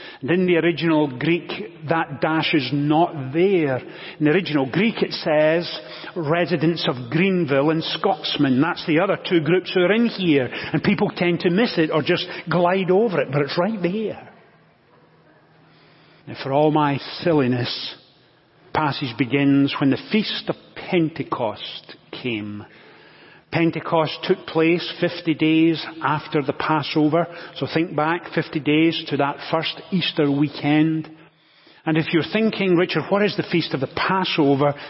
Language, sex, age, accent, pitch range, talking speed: English, male, 40-59, British, 150-170 Hz, 155 wpm